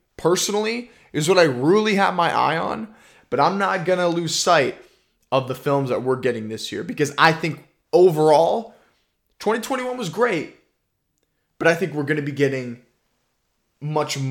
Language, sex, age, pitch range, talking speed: English, male, 20-39, 125-170 Hz, 160 wpm